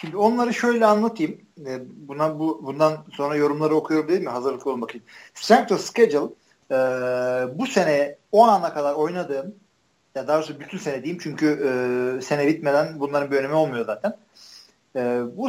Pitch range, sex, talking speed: 130-195 Hz, male, 165 wpm